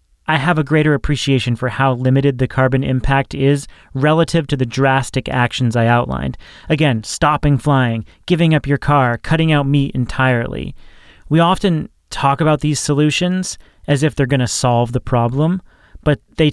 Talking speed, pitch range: 165 wpm, 125-155 Hz